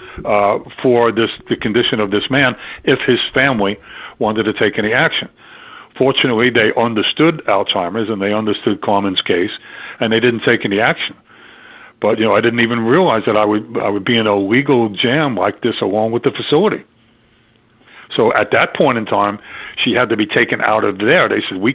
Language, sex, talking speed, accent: English, male, 195 wpm, American